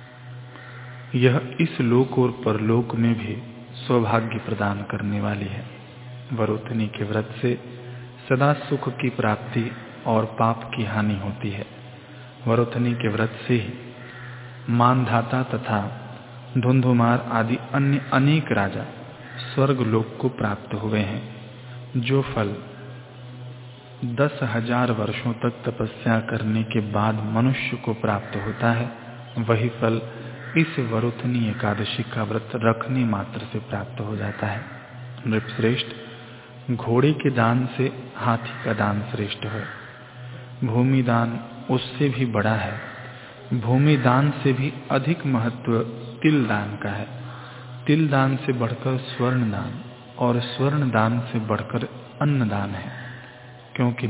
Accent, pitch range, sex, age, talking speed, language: native, 115-125 Hz, male, 40-59, 125 wpm, Hindi